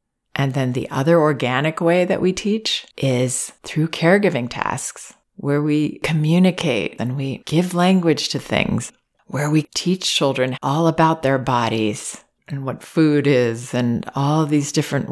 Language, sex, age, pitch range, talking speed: English, female, 40-59, 130-160 Hz, 150 wpm